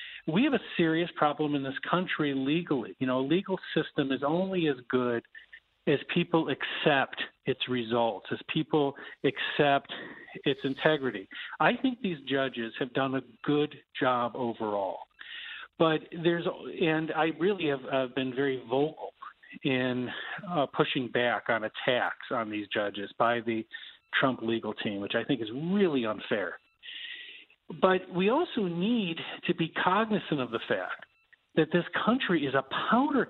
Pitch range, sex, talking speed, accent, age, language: 135-185 Hz, male, 150 wpm, American, 50-69, English